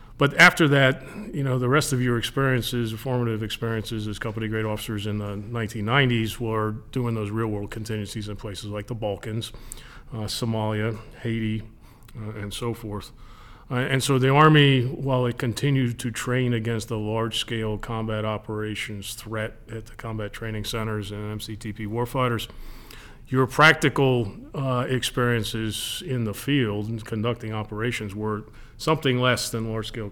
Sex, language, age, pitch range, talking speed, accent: male, English, 40-59, 105-125 Hz, 155 wpm, American